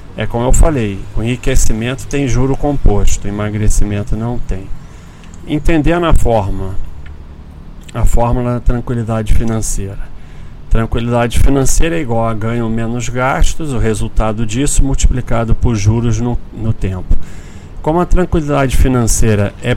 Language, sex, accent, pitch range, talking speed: Portuguese, male, Brazilian, 105-125 Hz, 130 wpm